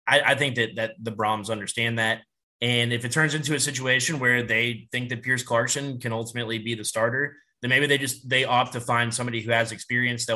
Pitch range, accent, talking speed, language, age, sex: 110-130 Hz, American, 230 wpm, English, 20-39, male